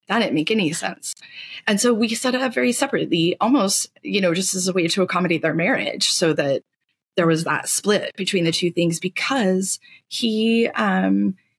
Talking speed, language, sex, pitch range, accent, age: 185 wpm, English, female, 170-230 Hz, American, 20-39